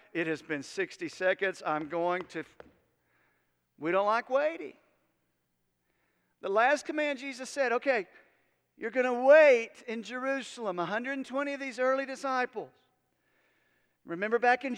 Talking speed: 130 wpm